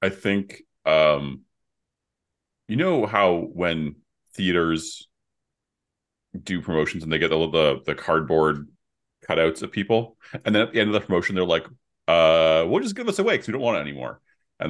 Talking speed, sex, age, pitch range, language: 175 wpm, male, 30-49, 80-105 Hz, English